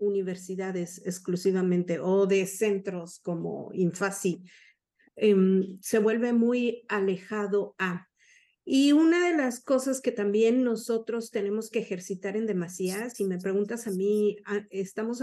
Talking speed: 125 wpm